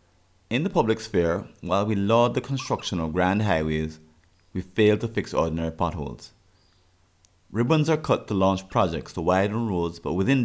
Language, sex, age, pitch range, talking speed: English, male, 30-49, 90-120 Hz, 165 wpm